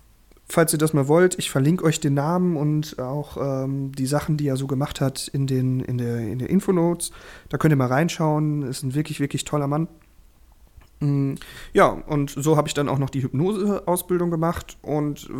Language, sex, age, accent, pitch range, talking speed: German, male, 30-49, German, 135-160 Hz, 195 wpm